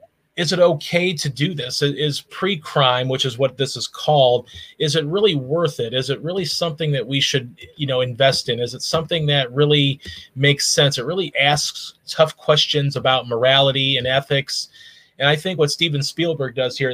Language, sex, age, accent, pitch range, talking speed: English, male, 30-49, American, 130-150 Hz, 190 wpm